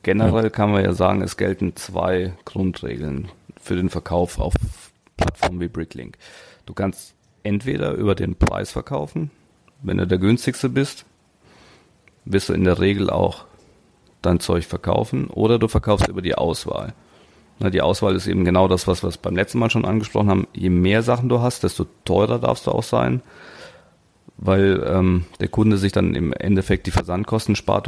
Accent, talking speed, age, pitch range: German, 170 wpm, 40-59, 90-105 Hz